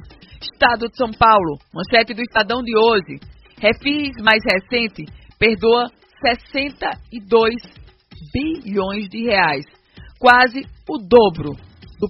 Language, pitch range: Portuguese, 205-255 Hz